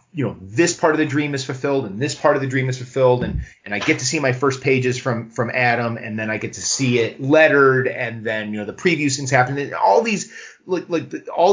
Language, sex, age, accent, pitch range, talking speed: English, male, 30-49, American, 115-145 Hz, 260 wpm